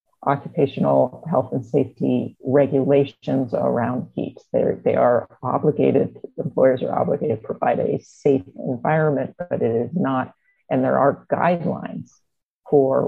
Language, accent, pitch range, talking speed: German, American, 135-155 Hz, 125 wpm